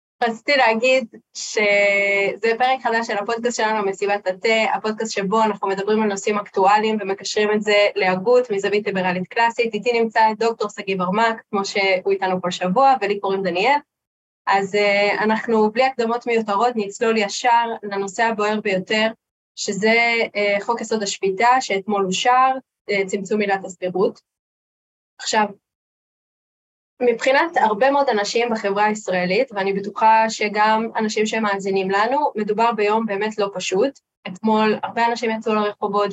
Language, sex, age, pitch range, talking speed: English, female, 20-39, 200-230 Hz, 130 wpm